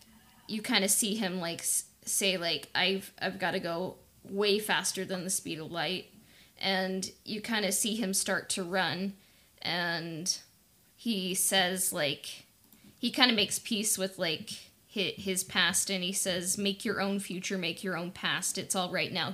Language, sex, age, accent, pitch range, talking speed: English, female, 20-39, American, 180-215 Hz, 175 wpm